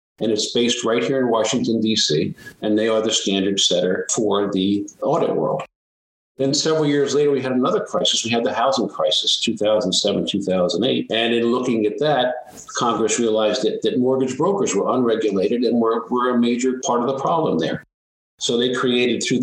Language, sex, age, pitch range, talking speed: English, male, 50-69, 105-130 Hz, 185 wpm